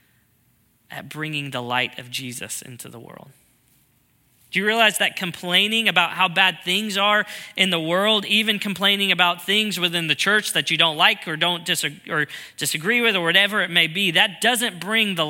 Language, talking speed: English, 185 wpm